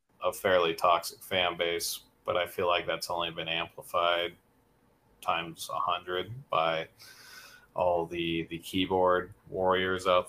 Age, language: 30-49, English